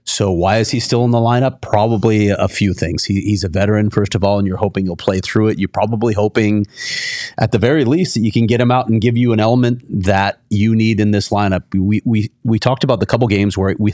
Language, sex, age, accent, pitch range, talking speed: English, male, 30-49, American, 95-120 Hz, 260 wpm